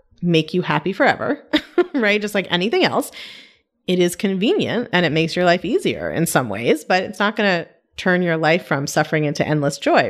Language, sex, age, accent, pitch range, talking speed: English, female, 30-49, American, 160-235 Hz, 195 wpm